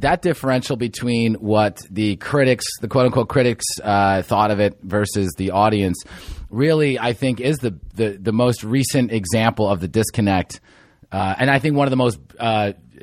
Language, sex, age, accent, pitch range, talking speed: English, male, 30-49, American, 105-130 Hz, 175 wpm